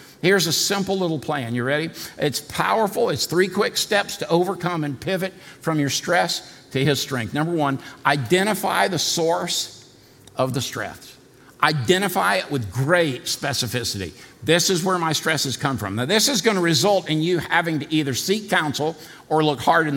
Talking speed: 185 wpm